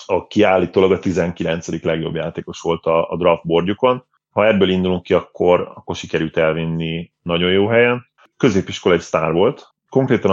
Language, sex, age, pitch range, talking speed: Hungarian, male, 30-49, 85-100 Hz, 150 wpm